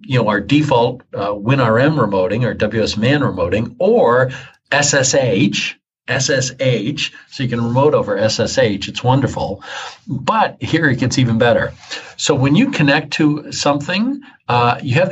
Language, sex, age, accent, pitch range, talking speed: English, male, 50-69, American, 115-150 Hz, 145 wpm